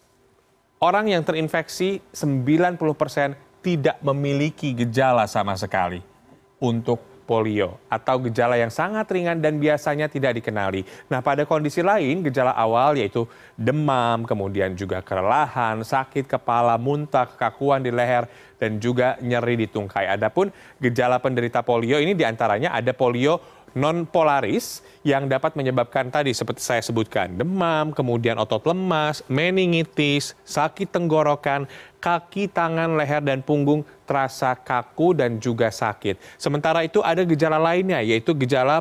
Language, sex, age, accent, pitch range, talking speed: Indonesian, male, 30-49, native, 120-160 Hz, 130 wpm